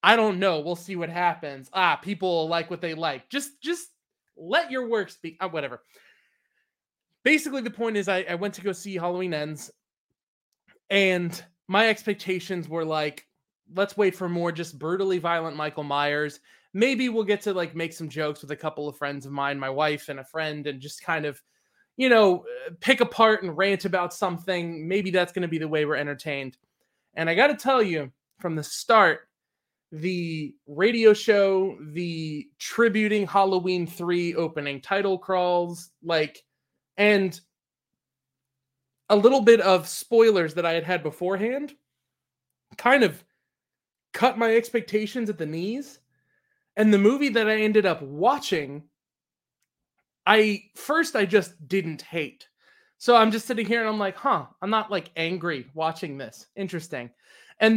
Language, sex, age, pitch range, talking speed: English, male, 20-39, 160-215 Hz, 160 wpm